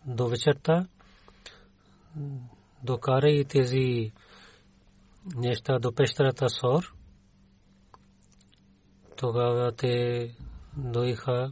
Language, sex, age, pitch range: Bulgarian, male, 30-49, 120-135 Hz